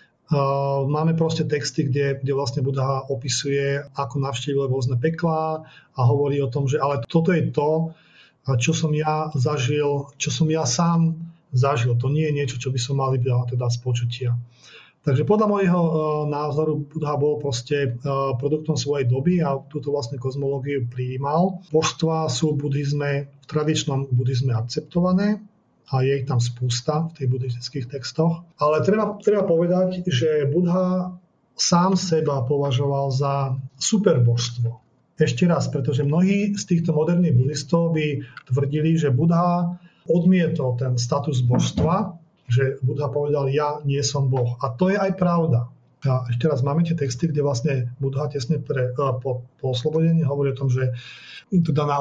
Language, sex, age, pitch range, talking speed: Slovak, male, 40-59, 135-160 Hz, 155 wpm